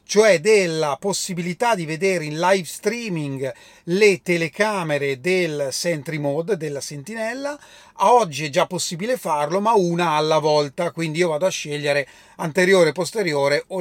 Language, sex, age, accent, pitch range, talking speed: Italian, male, 30-49, native, 155-210 Hz, 150 wpm